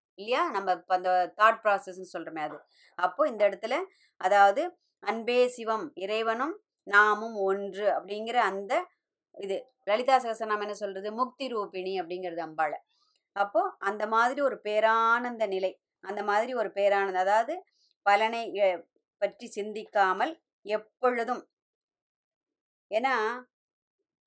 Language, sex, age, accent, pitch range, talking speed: Tamil, male, 20-39, native, 190-235 Hz, 105 wpm